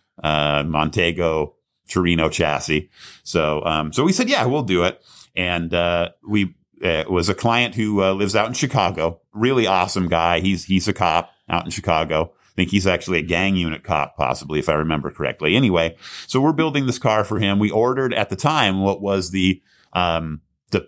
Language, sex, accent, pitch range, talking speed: English, male, American, 85-100 Hz, 195 wpm